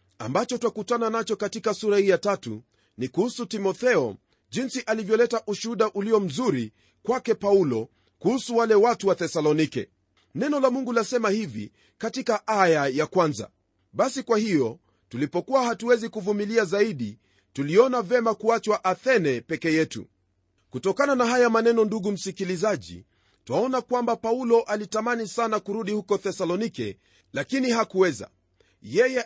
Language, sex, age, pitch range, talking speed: Swahili, male, 40-59, 155-230 Hz, 125 wpm